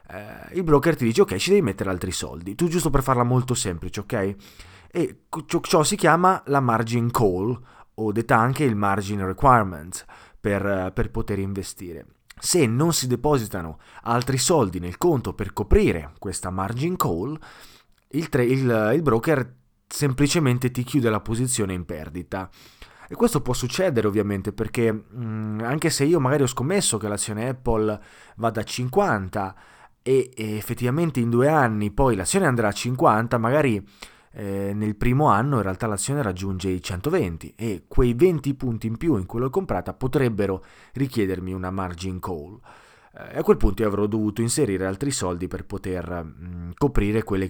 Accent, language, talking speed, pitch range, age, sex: native, Italian, 160 wpm, 95-135 Hz, 20-39, male